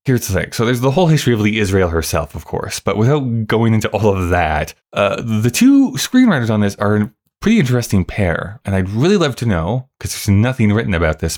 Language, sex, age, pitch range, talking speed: English, male, 20-39, 90-115 Hz, 230 wpm